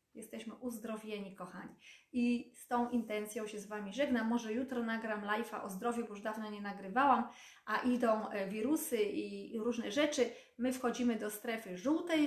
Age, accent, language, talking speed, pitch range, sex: 30-49, native, Polish, 160 wpm, 210-270 Hz, female